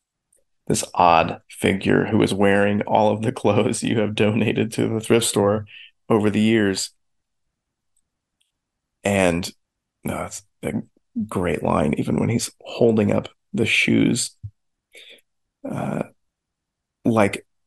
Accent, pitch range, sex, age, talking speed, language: American, 100-110 Hz, male, 30-49, 115 wpm, English